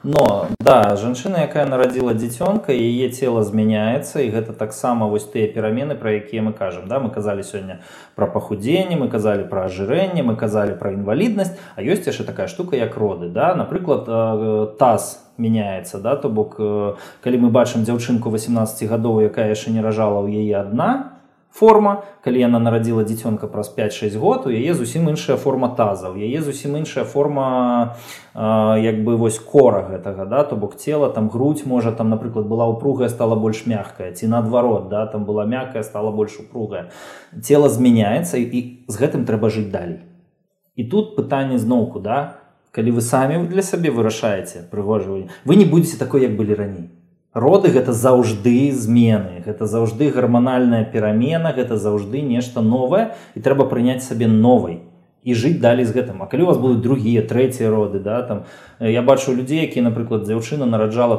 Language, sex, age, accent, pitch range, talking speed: Russian, male, 20-39, native, 105-130 Hz, 165 wpm